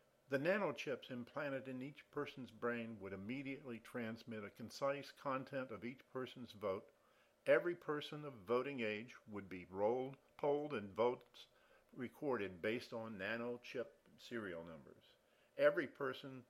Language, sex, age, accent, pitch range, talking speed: English, male, 50-69, American, 115-145 Hz, 140 wpm